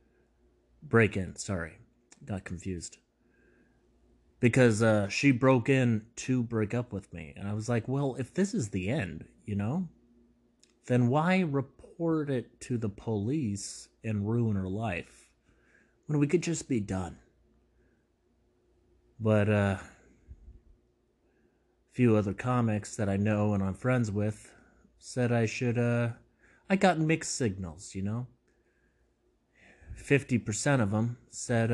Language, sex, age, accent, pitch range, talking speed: English, male, 30-49, American, 100-130 Hz, 135 wpm